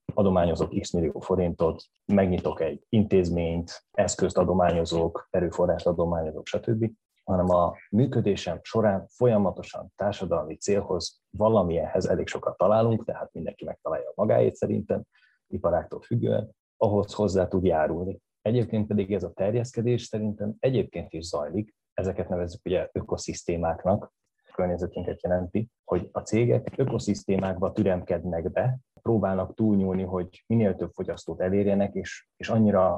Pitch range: 90-105 Hz